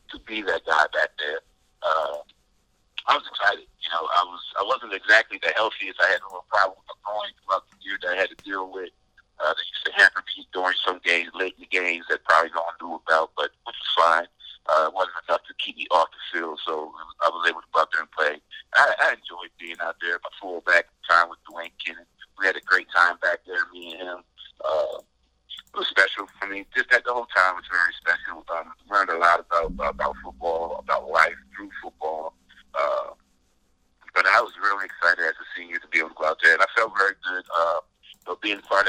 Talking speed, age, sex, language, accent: 230 wpm, 60-79, male, English, American